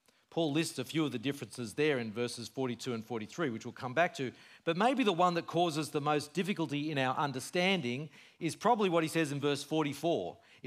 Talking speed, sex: 215 wpm, male